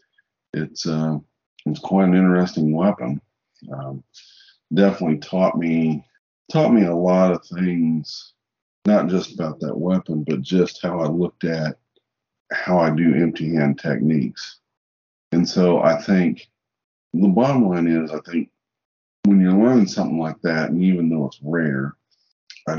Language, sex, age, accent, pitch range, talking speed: English, male, 50-69, American, 75-90 Hz, 145 wpm